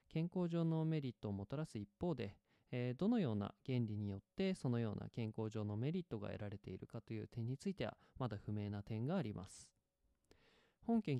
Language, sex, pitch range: Japanese, male, 110-170 Hz